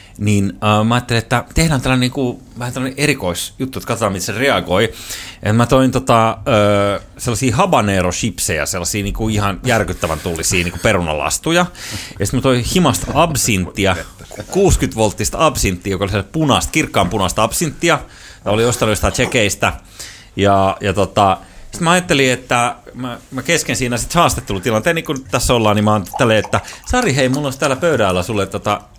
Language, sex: Finnish, male